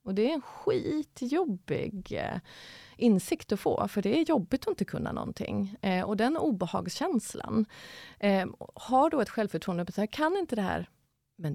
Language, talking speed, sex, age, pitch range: Swedish, 175 wpm, female, 30-49, 185-235 Hz